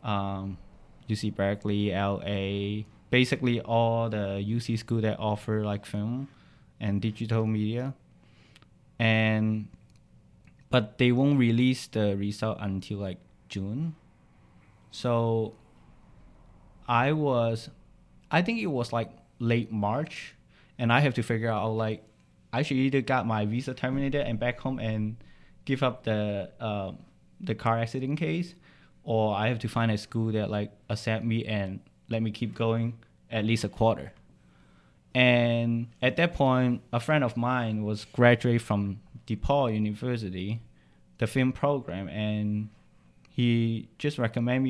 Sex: male